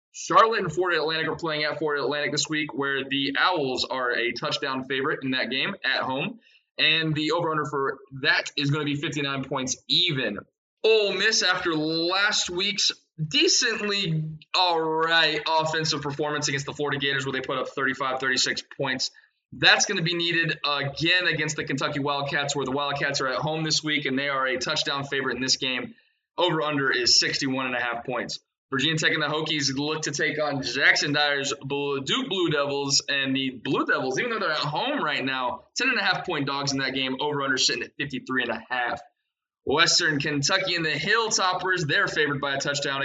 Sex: male